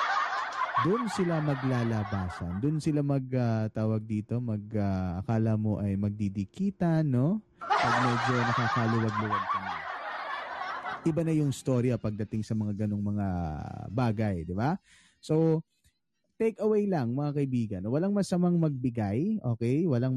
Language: Filipino